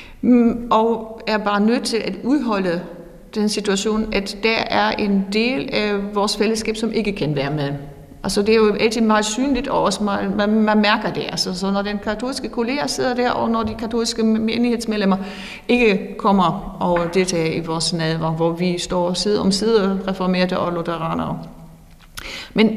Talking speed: 175 wpm